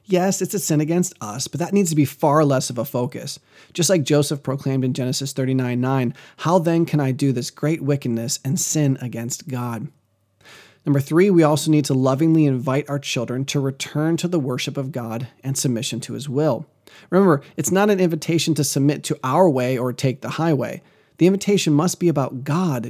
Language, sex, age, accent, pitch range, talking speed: English, male, 30-49, American, 130-165 Hz, 200 wpm